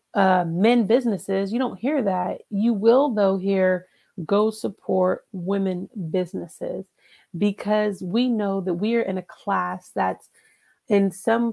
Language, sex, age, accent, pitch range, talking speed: English, female, 30-49, American, 185-225 Hz, 140 wpm